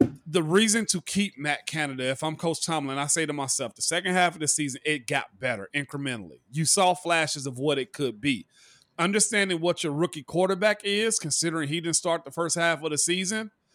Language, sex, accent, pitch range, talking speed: English, male, American, 145-185 Hz, 210 wpm